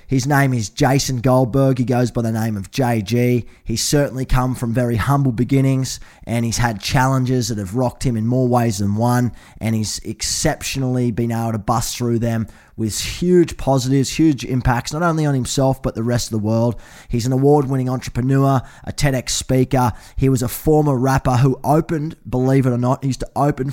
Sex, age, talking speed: male, 20-39, 195 wpm